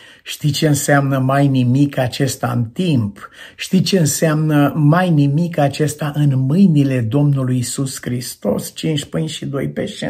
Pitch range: 130-155 Hz